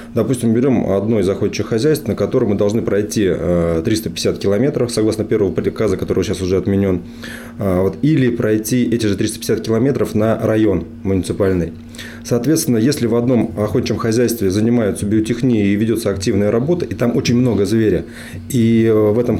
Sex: male